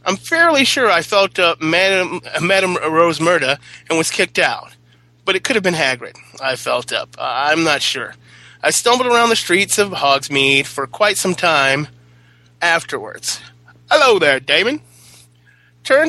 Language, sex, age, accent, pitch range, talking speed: English, male, 30-49, American, 135-190 Hz, 155 wpm